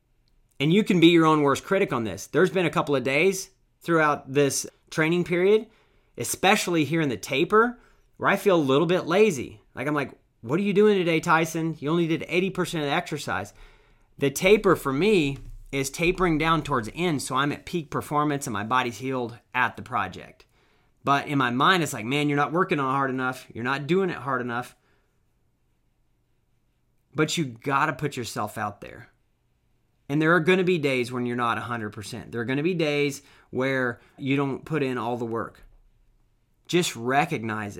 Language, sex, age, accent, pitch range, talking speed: English, male, 30-49, American, 120-165 Hz, 195 wpm